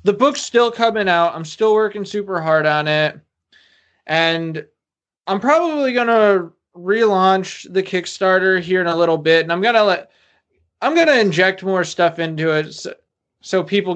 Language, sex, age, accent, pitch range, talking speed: English, male, 20-39, American, 155-200 Hz, 175 wpm